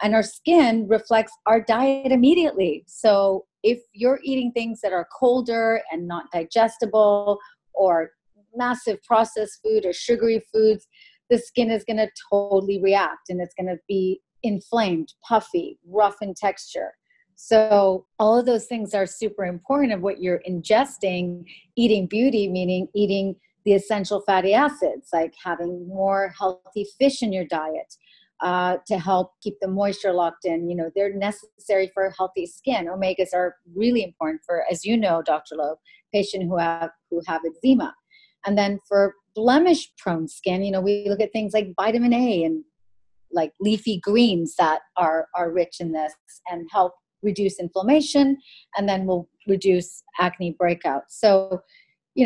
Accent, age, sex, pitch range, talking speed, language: American, 30-49, female, 180-225 Hz, 155 wpm, English